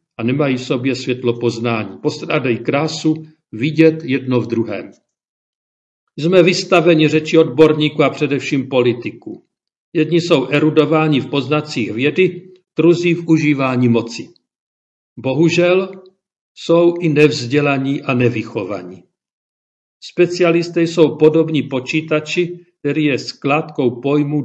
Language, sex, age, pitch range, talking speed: Czech, male, 50-69, 125-170 Hz, 105 wpm